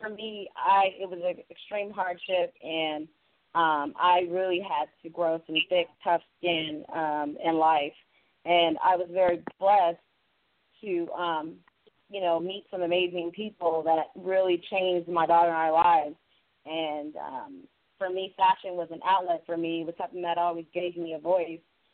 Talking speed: 170 wpm